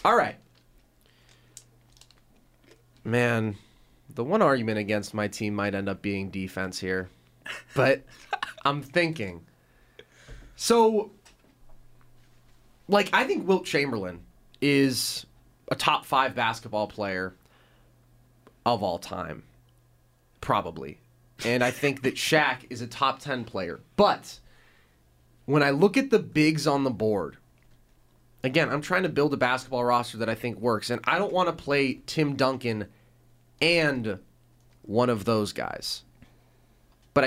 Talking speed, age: 130 wpm, 30-49